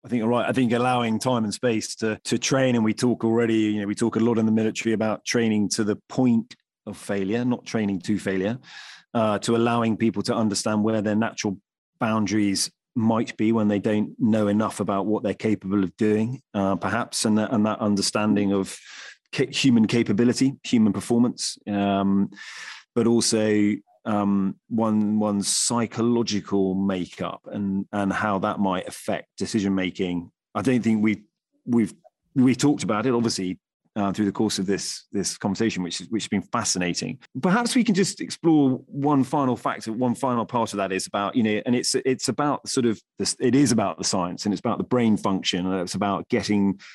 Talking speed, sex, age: 195 wpm, male, 30-49